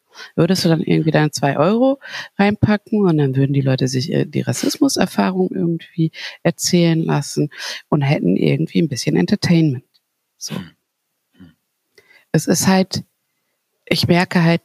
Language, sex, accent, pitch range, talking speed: German, female, German, 155-190 Hz, 130 wpm